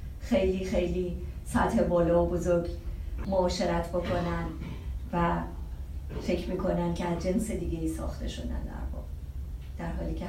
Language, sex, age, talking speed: Persian, female, 30-49, 130 wpm